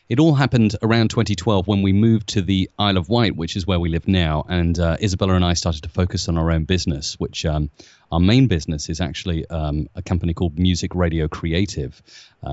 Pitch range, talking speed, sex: 90-115 Hz, 220 wpm, male